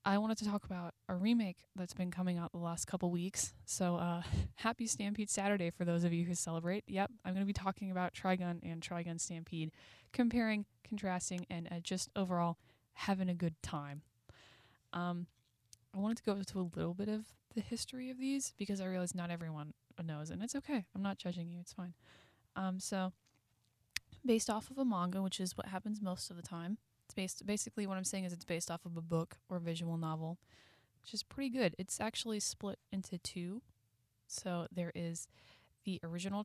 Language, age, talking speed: English, 10-29, 200 wpm